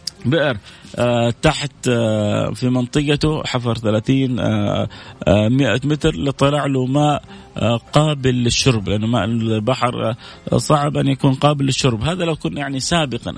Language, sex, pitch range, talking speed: Arabic, male, 115-145 Hz, 150 wpm